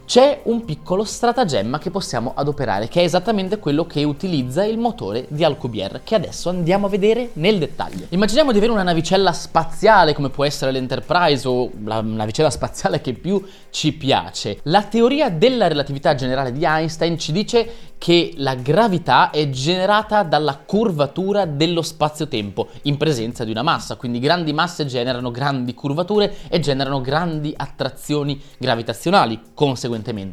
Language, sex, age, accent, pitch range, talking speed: Italian, male, 20-39, native, 130-195 Hz, 150 wpm